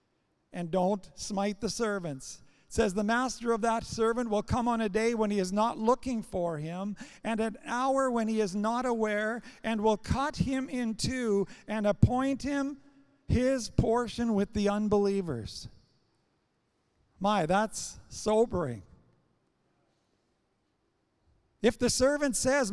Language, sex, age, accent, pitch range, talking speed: English, male, 50-69, American, 195-235 Hz, 140 wpm